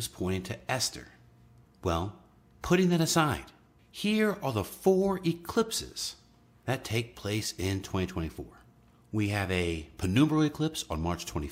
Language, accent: English, American